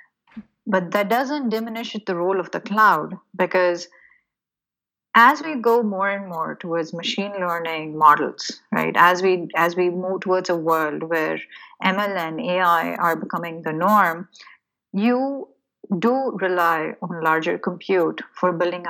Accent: Indian